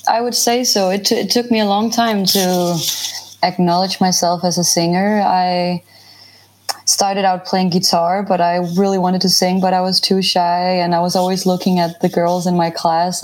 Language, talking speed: English, 205 wpm